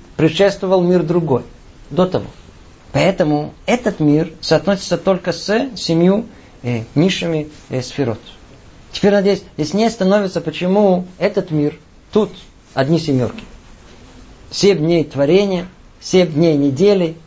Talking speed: 115 wpm